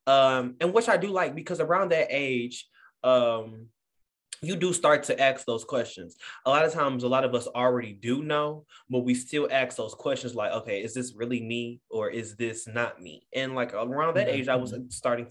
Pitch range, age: 120-145 Hz, 20-39